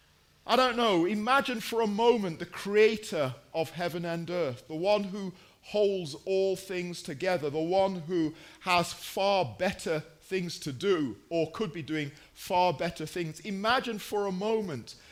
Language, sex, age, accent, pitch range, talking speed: English, male, 40-59, British, 160-200 Hz, 160 wpm